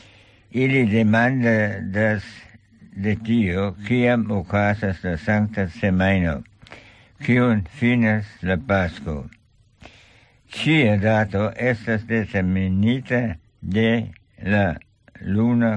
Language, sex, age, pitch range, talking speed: English, male, 60-79, 100-115 Hz, 90 wpm